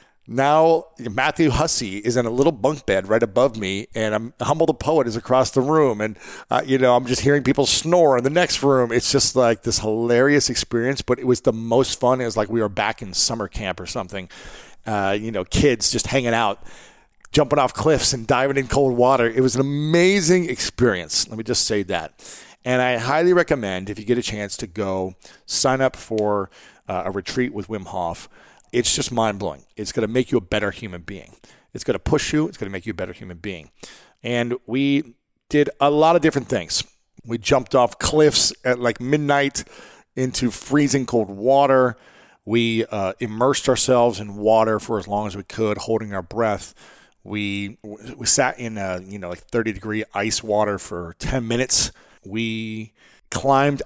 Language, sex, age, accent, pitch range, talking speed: English, male, 40-59, American, 105-135 Hz, 200 wpm